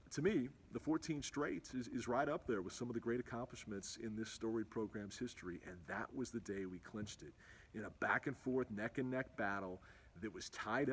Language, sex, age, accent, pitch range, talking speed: English, male, 40-59, American, 105-140 Hz, 205 wpm